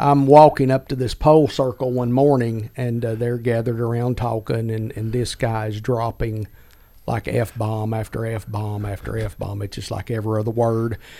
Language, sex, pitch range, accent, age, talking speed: English, male, 110-130 Hz, American, 50-69, 170 wpm